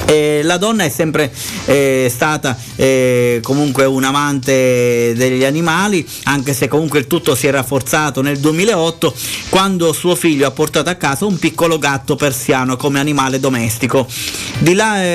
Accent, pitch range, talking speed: native, 135-170 Hz, 160 wpm